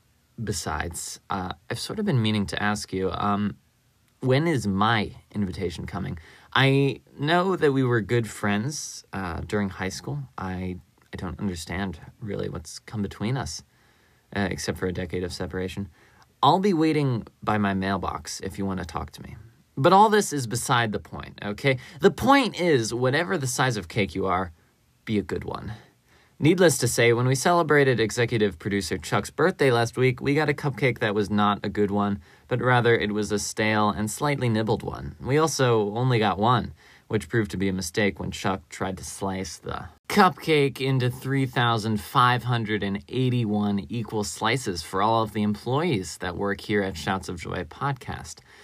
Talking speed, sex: 180 wpm, male